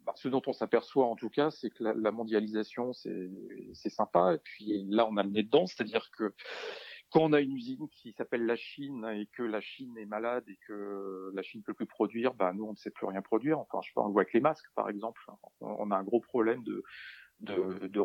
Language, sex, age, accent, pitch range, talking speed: French, male, 40-59, French, 100-135 Hz, 255 wpm